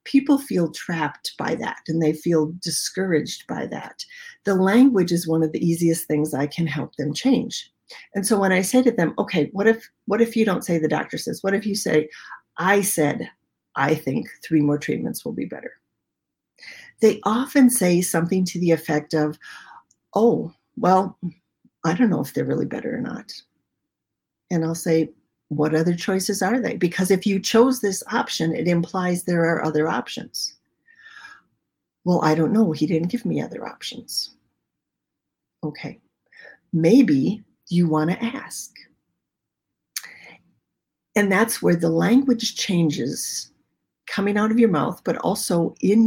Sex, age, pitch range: female, 50-69, 165-225 Hz